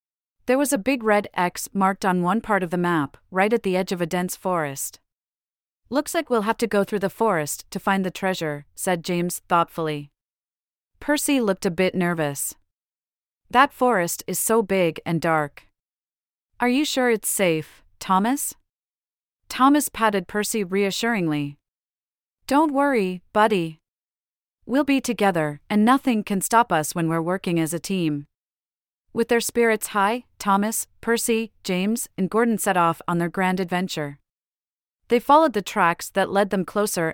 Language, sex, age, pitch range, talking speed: English, female, 30-49, 160-225 Hz, 160 wpm